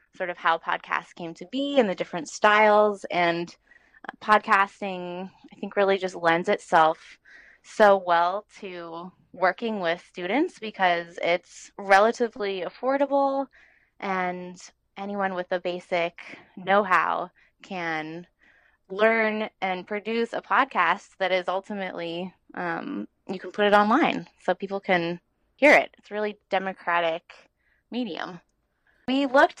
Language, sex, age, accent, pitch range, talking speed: English, female, 20-39, American, 175-220 Hz, 130 wpm